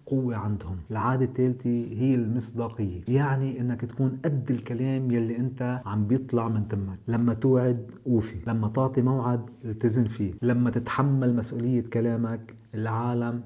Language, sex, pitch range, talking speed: Arabic, male, 110-130 Hz, 135 wpm